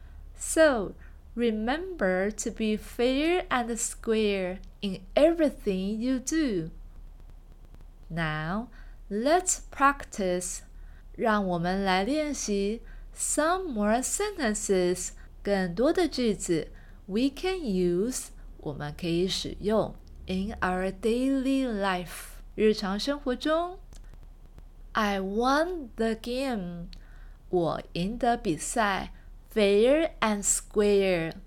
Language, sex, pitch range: Chinese, female, 185-265 Hz